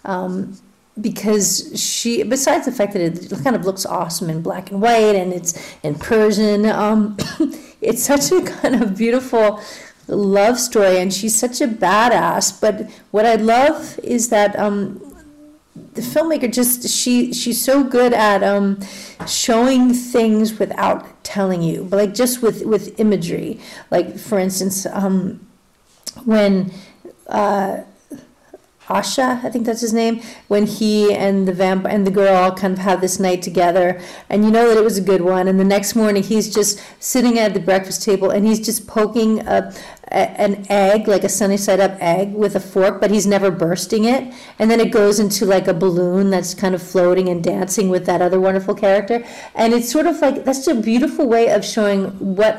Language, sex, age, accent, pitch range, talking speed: English, female, 40-59, American, 195-230 Hz, 185 wpm